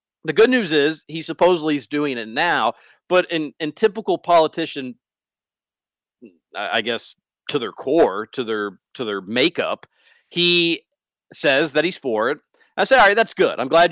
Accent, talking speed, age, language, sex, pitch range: American, 170 wpm, 40-59, English, male, 125-165 Hz